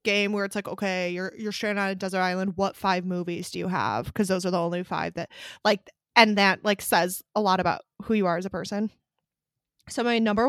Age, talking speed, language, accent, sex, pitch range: 20-39, 240 wpm, English, American, female, 185-215 Hz